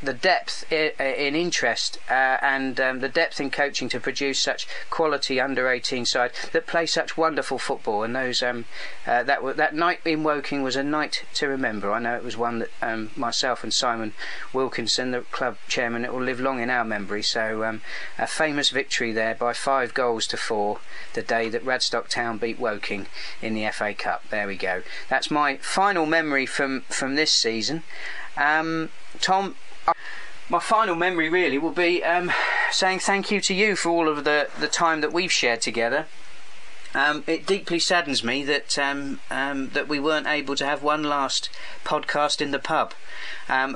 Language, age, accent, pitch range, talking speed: English, 40-59, British, 125-155 Hz, 185 wpm